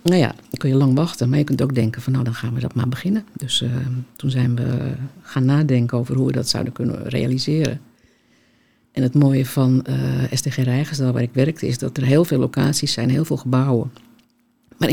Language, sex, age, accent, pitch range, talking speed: Dutch, female, 50-69, Dutch, 130-165 Hz, 220 wpm